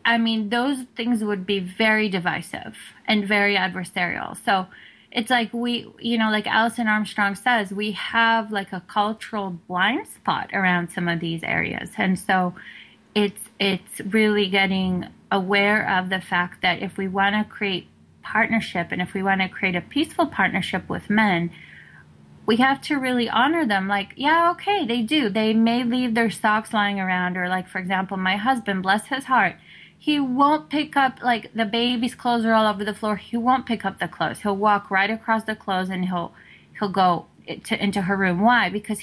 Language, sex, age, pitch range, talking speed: English, female, 20-39, 190-235 Hz, 190 wpm